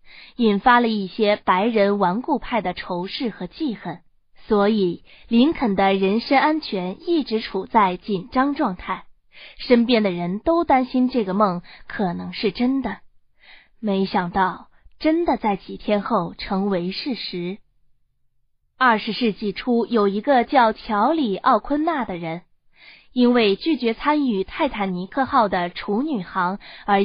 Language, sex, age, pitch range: Chinese, female, 20-39, 195-255 Hz